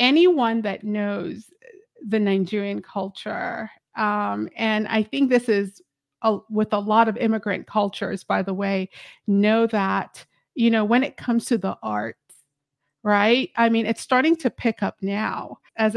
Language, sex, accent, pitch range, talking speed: English, female, American, 210-260 Hz, 160 wpm